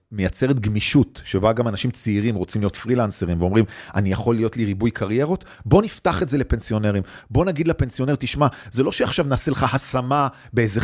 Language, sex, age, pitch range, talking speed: Hebrew, male, 40-59, 105-150 Hz, 175 wpm